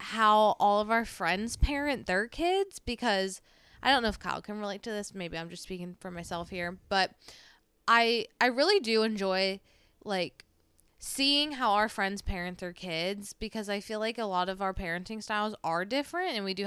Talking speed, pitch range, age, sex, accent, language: 195 wpm, 190-245 Hz, 20-39, female, American, English